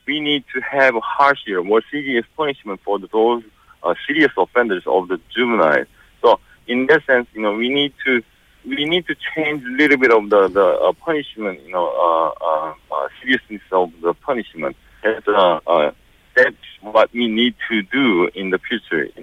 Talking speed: 185 wpm